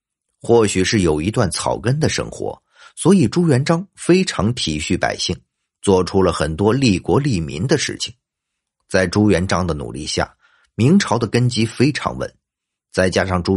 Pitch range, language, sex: 95-125 Hz, Chinese, male